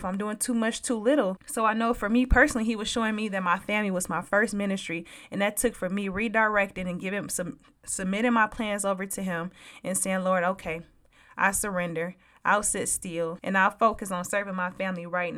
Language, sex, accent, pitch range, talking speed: English, female, American, 180-230 Hz, 220 wpm